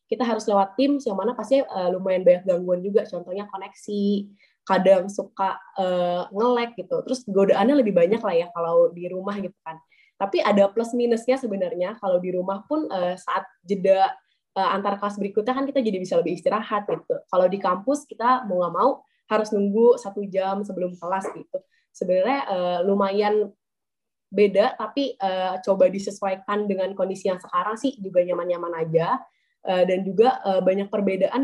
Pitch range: 190-230 Hz